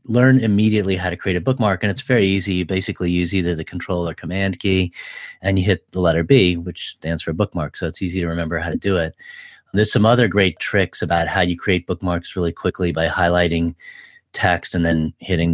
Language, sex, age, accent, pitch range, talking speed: English, male, 30-49, American, 85-100 Hz, 220 wpm